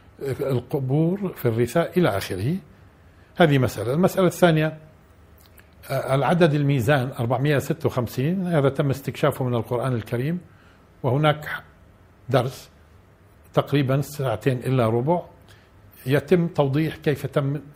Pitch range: 110-145 Hz